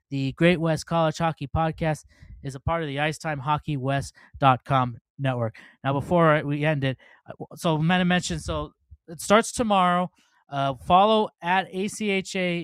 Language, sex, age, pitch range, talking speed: English, male, 20-39, 130-160 Hz, 145 wpm